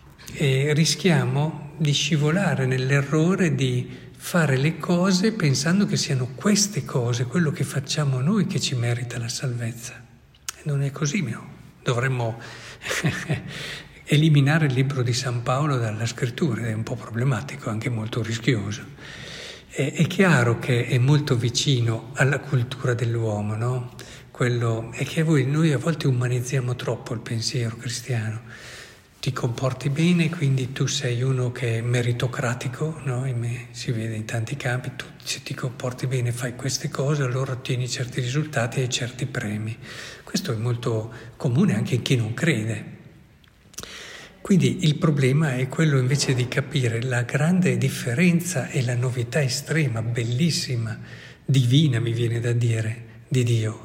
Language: Italian